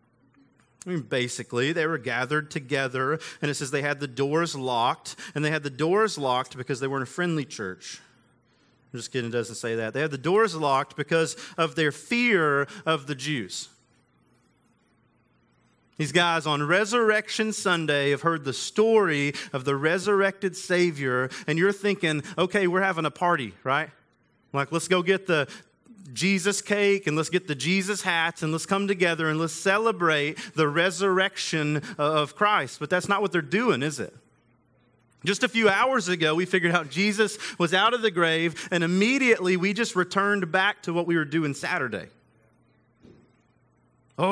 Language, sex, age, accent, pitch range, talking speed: English, male, 40-59, American, 145-195 Hz, 175 wpm